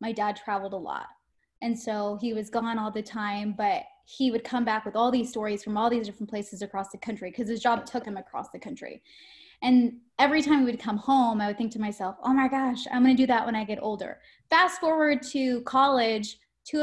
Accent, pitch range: American, 215-265 Hz